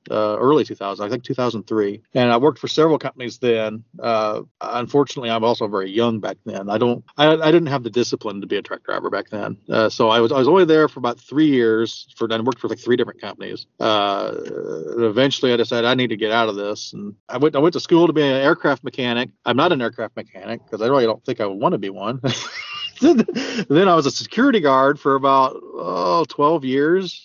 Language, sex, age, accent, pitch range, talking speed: English, male, 40-59, American, 115-140 Hz, 235 wpm